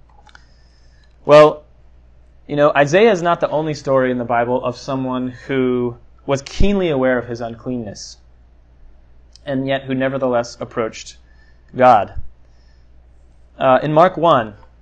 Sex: male